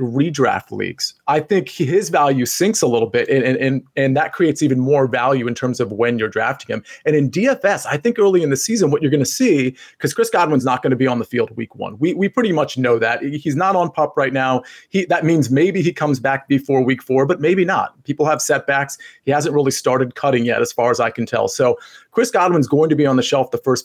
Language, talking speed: English, 255 wpm